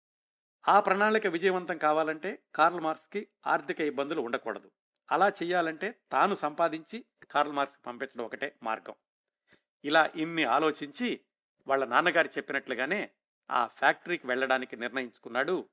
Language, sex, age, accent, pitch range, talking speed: Telugu, male, 60-79, native, 140-170 Hz, 105 wpm